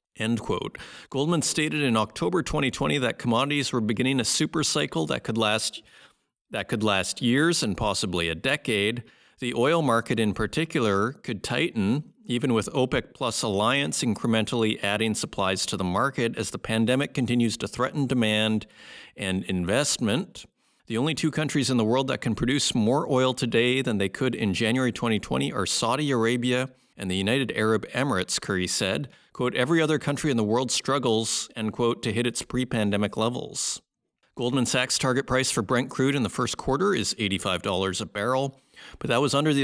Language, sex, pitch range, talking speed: English, male, 105-135 Hz, 170 wpm